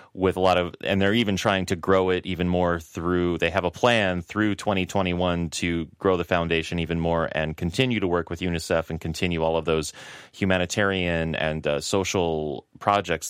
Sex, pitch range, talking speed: male, 85-100 Hz, 190 wpm